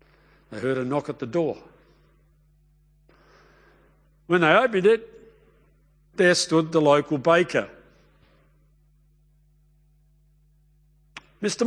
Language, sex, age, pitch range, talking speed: English, male, 50-69, 150-185 Hz, 85 wpm